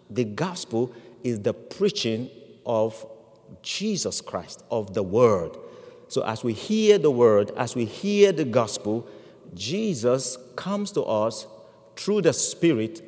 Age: 50-69